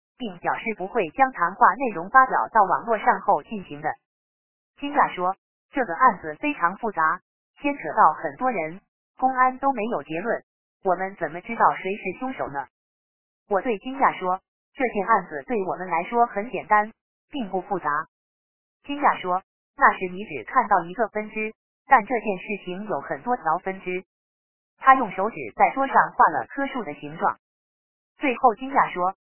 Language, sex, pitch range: Chinese, female, 180-250 Hz